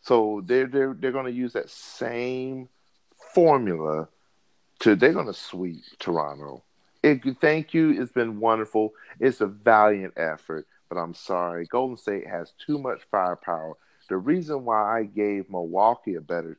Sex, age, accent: male, 40-59, American